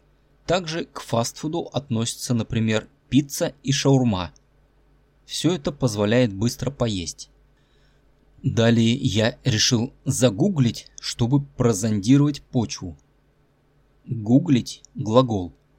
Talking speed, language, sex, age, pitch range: 85 wpm, Russian, male, 20-39, 115-140 Hz